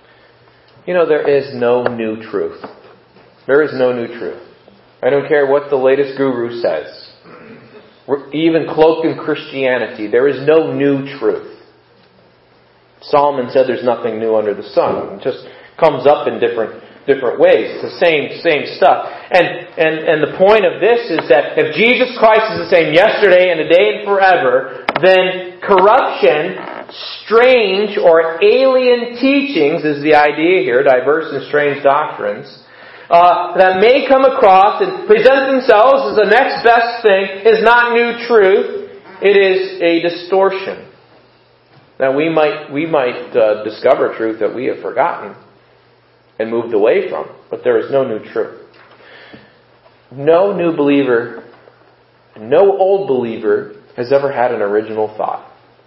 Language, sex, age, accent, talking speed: English, male, 40-59, American, 150 wpm